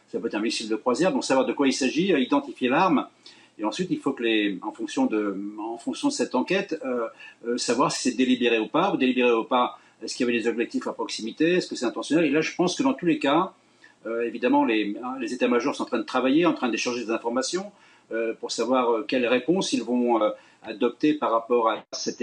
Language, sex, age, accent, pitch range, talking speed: French, male, 50-69, French, 125-190 Hz, 250 wpm